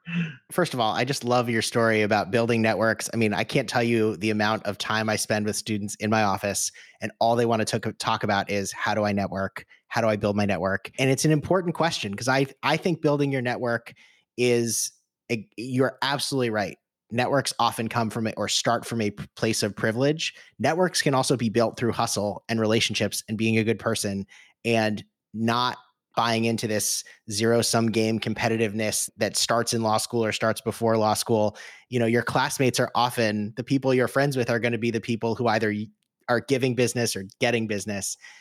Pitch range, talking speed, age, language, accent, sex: 110-130 Hz, 205 wpm, 30-49, English, American, male